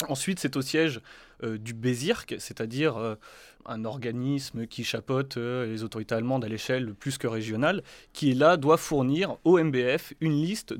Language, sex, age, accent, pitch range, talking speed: French, male, 20-39, French, 115-150 Hz, 165 wpm